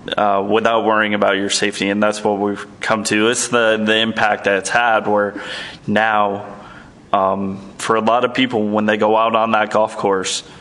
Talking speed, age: 200 wpm, 20-39